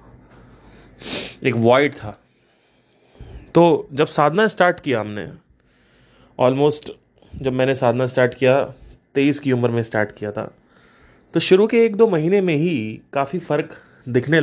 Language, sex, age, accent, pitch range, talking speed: Hindi, male, 30-49, native, 125-170 Hz, 135 wpm